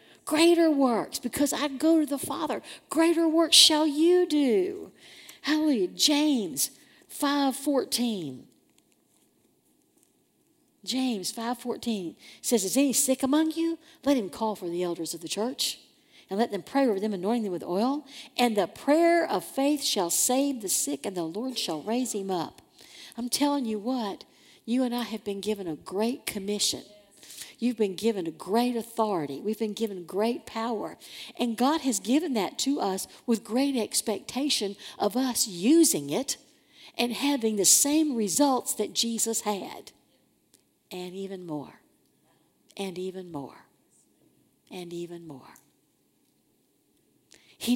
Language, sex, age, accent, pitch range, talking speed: English, female, 50-69, American, 200-280 Hz, 145 wpm